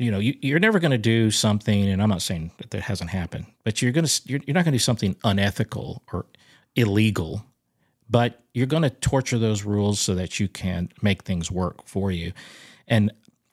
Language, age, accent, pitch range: English, 40-59, American, 95-120 Hz